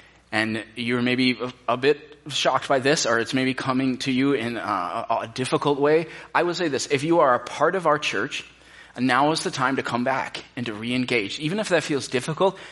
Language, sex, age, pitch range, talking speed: English, male, 30-49, 130-165 Hz, 215 wpm